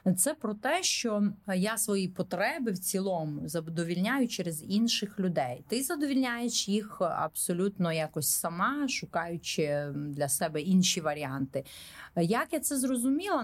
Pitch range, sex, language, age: 160-220 Hz, female, Ukrainian, 30-49